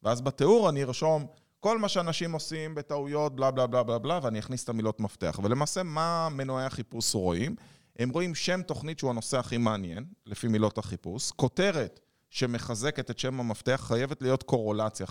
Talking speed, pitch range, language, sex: 170 wpm, 110-140 Hz, Hebrew, male